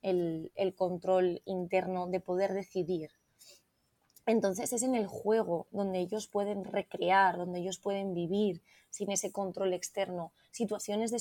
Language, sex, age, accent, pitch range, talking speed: Spanish, female, 20-39, Spanish, 185-210 Hz, 140 wpm